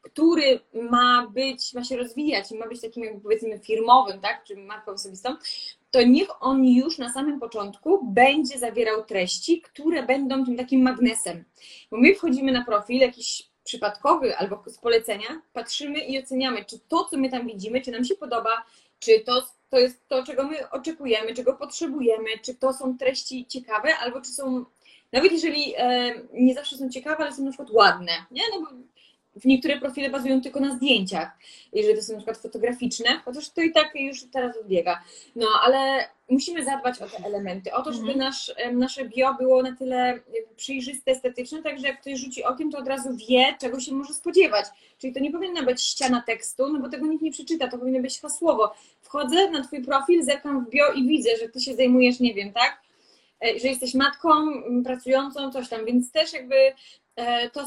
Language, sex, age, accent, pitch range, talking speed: Polish, female, 20-39, native, 235-275 Hz, 190 wpm